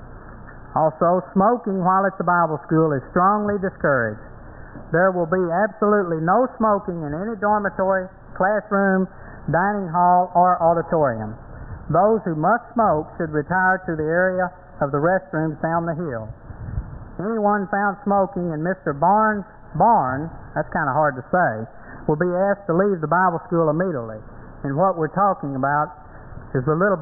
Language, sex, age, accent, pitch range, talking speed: English, male, 60-79, American, 140-185 Hz, 155 wpm